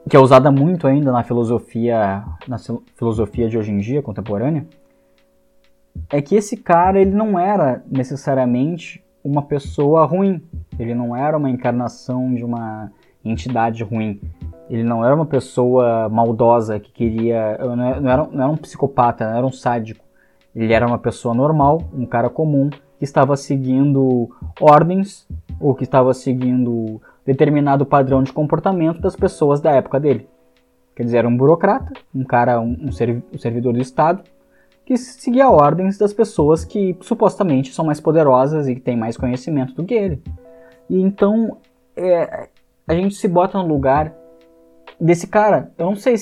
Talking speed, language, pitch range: 155 wpm, Portuguese, 120-160 Hz